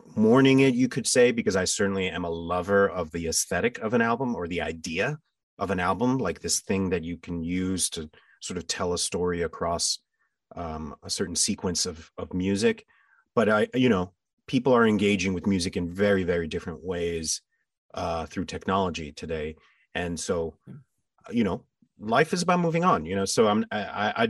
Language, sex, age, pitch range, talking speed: English, male, 30-49, 90-130 Hz, 190 wpm